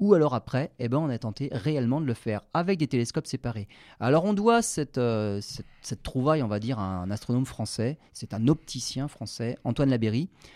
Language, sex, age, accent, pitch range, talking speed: French, male, 40-59, French, 115-150 Hz, 210 wpm